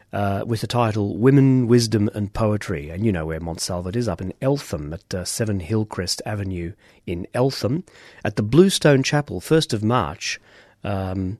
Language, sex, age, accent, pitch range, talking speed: English, male, 40-59, British, 95-120 Hz, 170 wpm